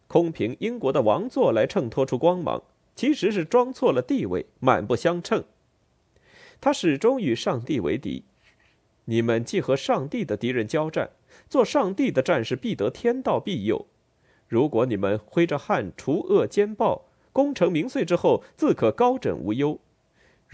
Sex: male